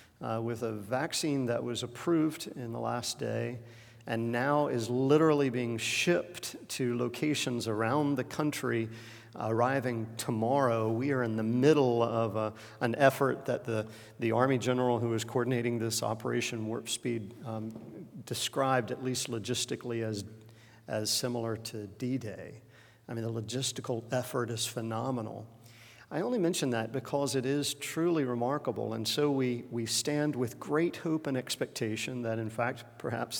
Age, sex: 50-69, male